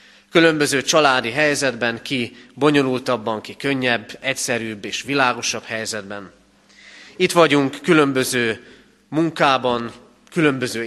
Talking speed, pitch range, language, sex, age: 90 wpm, 115-150 Hz, Hungarian, male, 30-49